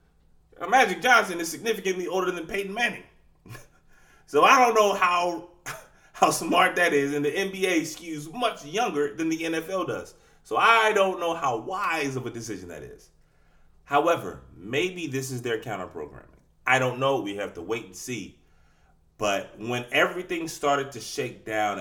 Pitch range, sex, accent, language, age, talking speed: 90-150 Hz, male, American, English, 30-49, 165 wpm